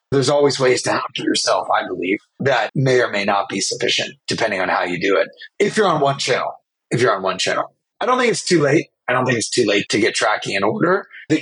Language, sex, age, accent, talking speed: English, male, 30-49, American, 255 wpm